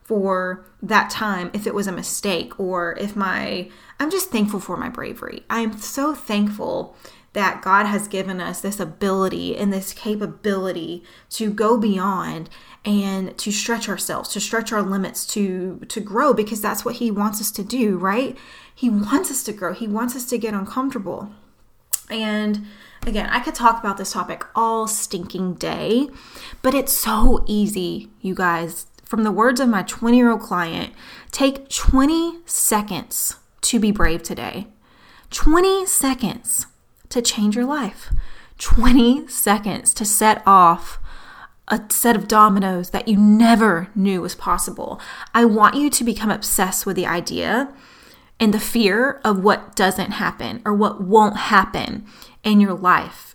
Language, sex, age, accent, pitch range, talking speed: English, female, 30-49, American, 195-235 Hz, 155 wpm